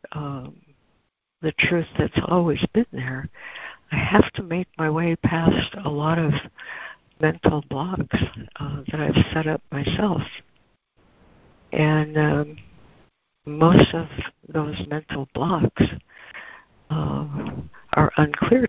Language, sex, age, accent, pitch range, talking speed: English, female, 60-79, American, 140-160 Hz, 110 wpm